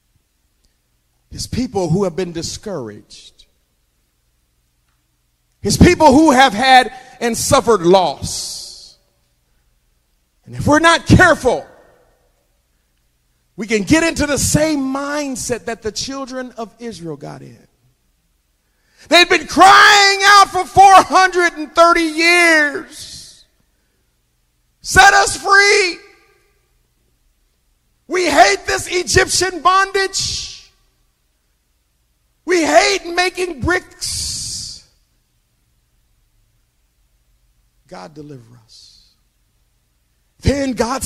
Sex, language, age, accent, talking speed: male, English, 40-59, American, 85 wpm